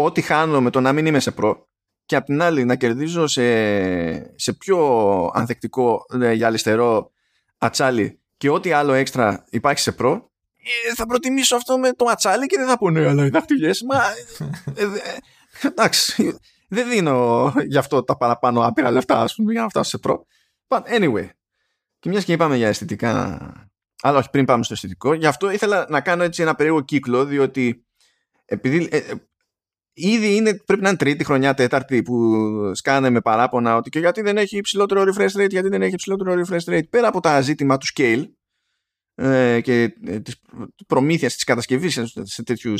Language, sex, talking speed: Greek, male, 180 wpm